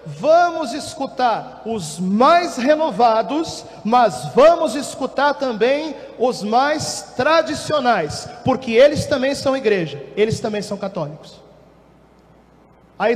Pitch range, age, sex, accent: 220-275 Hz, 40-59, male, Brazilian